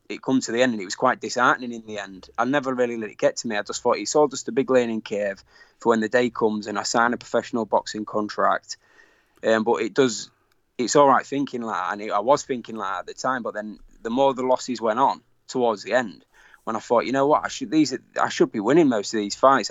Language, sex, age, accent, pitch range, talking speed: English, male, 20-39, British, 110-130 Hz, 275 wpm